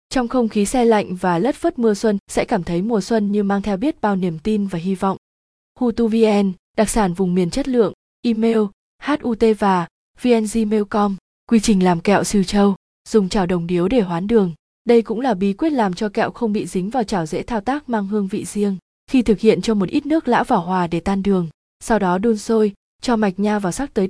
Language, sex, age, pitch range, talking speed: Vietnamese, female, 20-39, 190-235 Hz, 230 wpm